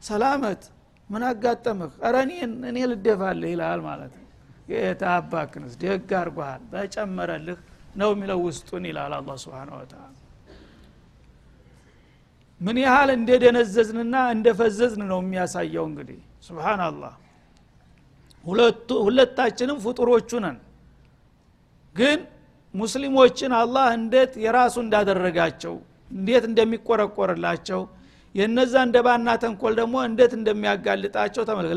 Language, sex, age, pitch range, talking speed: Amharic, male, 60-79, 185-240 Hz, 85 wpm